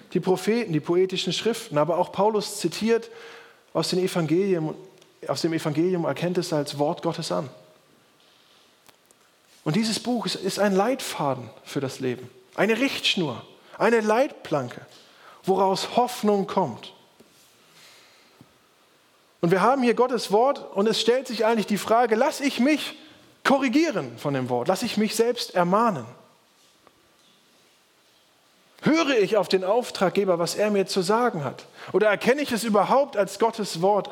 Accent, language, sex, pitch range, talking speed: German, German, male, 180-230 Hz, 140 wpm